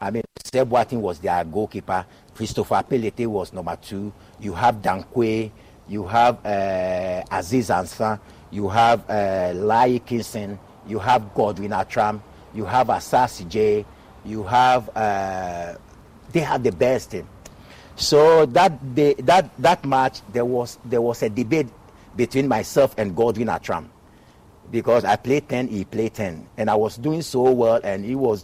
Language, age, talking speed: English, 50-69, 155 wpm